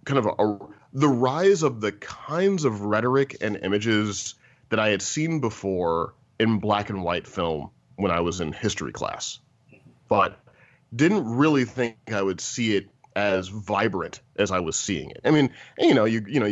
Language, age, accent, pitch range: English, 30-49, American, 100-140 Hz